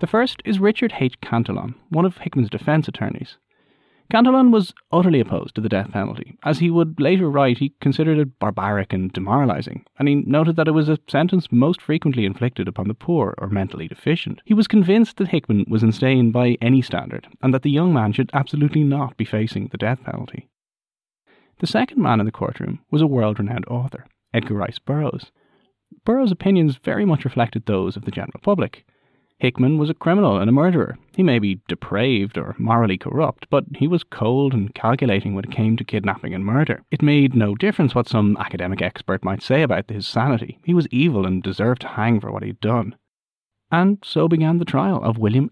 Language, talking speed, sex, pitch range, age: English, 200 wpm, male, 110-160 Hz, 30-49